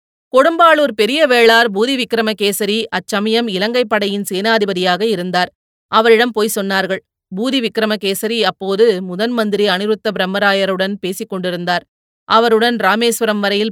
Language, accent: Tamil, native